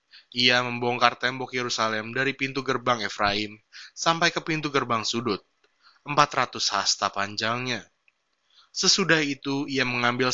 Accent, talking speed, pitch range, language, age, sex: native, 115 wpm, 110-145 Hz, Indonesian, 20-39, male